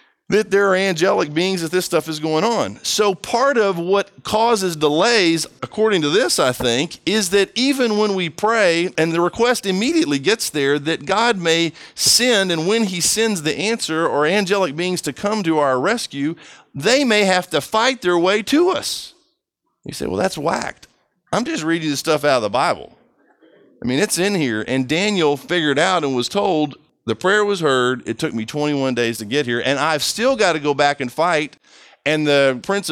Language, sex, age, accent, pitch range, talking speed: English, male, 40-59, American, 150-205 Hz, 200 wpm